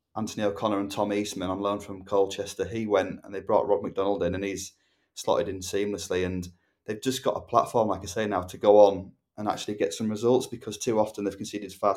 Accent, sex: British, male